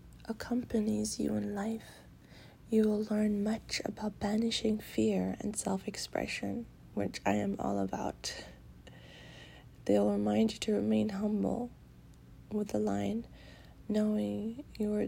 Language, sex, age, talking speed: English, female, 20-39, 120 wpm